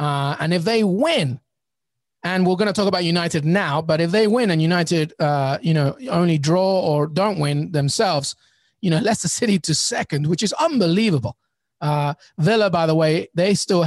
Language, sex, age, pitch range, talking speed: English, male, 30-49, 150-185 Hz, 190 wpm